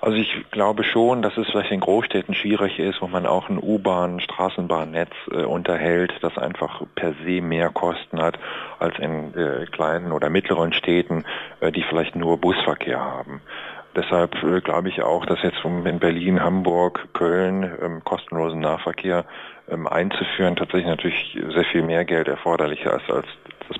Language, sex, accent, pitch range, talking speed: German, male, German, 85-105 Hz, 170 wpm